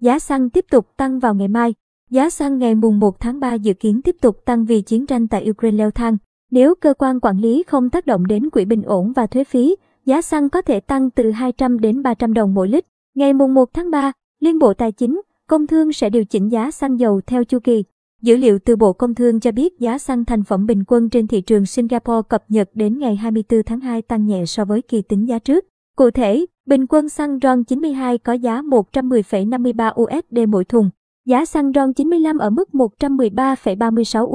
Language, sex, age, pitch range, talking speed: Vietnamese, male, 20-39, 225-270 Hz, 220 wpm